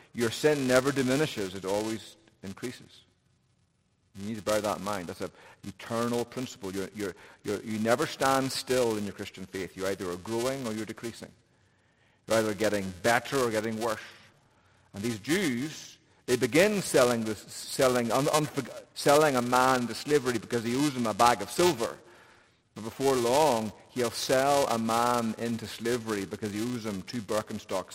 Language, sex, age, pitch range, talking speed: English, male, 50-69, 105-130 Hz, 175 wpm